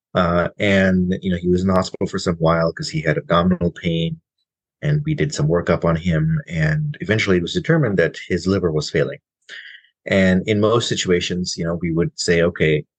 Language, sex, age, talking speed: English, male, 30-49, 205 wpm